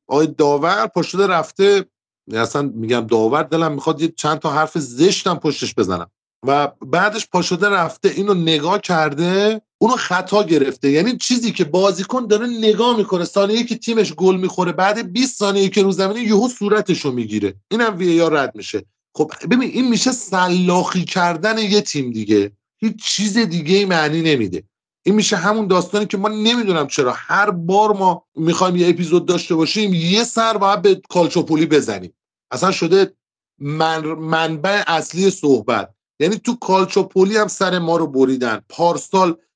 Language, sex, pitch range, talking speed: Persian, male, 160-210 Hz, 155 wpm